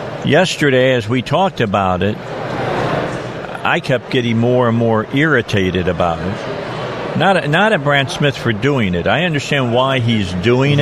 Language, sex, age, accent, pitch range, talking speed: English, male, 50-69, American, 120-150 Hz, 160 wpm